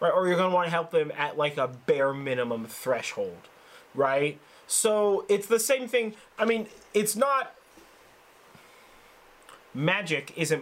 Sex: male